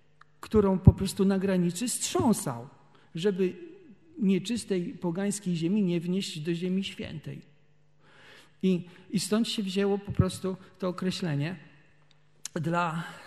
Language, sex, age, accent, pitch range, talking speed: Polish, male, 50-69, native, 160-195 Hz, 115 wpm